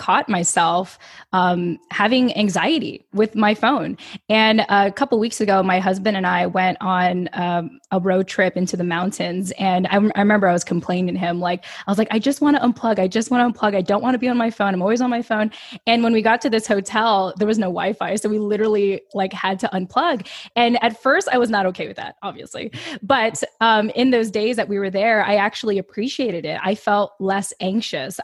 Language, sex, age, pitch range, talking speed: English, female, 10-29, 190-235 Hz, 230 wpm